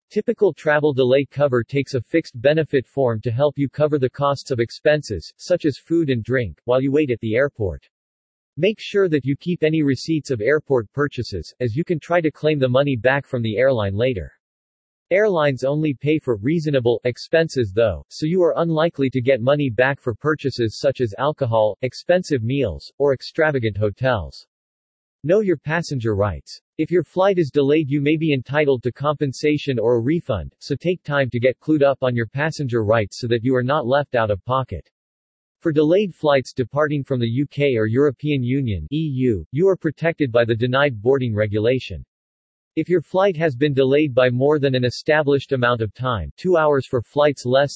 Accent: American